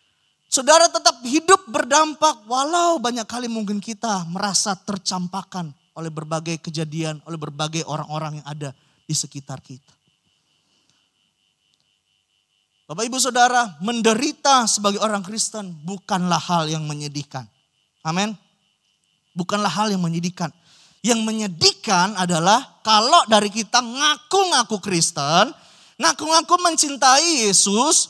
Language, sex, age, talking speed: Indonesian, male, 20-39, 105 wpm